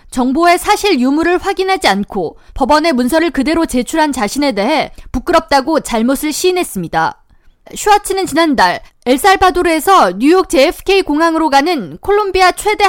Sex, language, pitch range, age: female, Korean, 260-360 Hz, 20-39